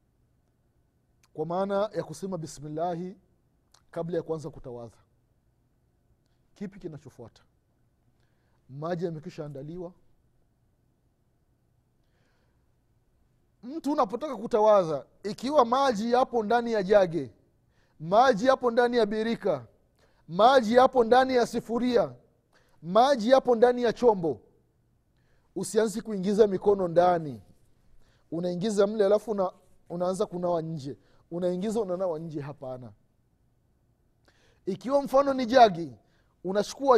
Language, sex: Swahili, male